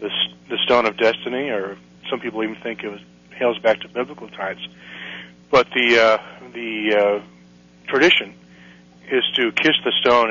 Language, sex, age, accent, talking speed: English, male, 40-59, American, 155 wpm